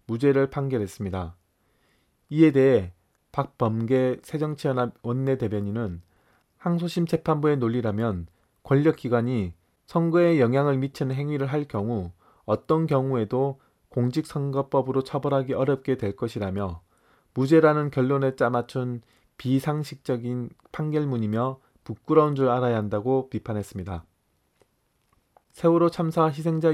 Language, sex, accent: Korean, male, native